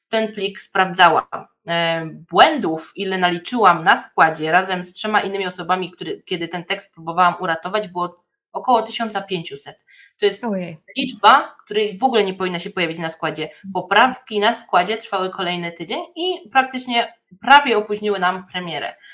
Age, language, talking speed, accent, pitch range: 20-39, Polish, 140 wpm, native, 175-220 Hz